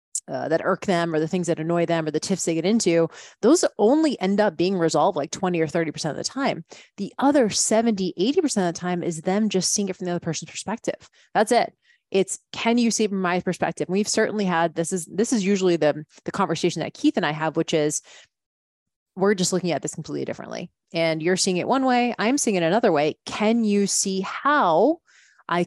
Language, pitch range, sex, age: English, 170-215 Hz, female, 20-39